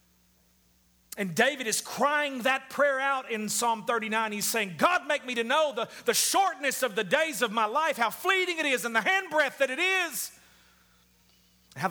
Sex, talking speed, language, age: male, 185 wpm, English, 40-59